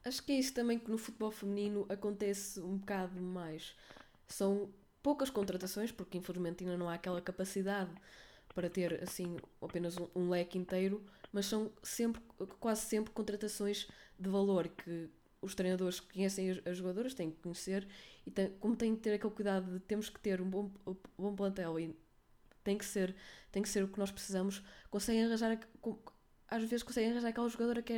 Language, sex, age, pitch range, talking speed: Portuguese, female, 20-39, 180-205 Hz, 185 wpm